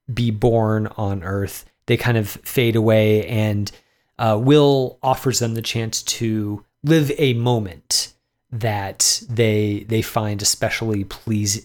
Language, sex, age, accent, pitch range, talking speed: English, male, 30-49, American, 105-130 Hz, 135 wpm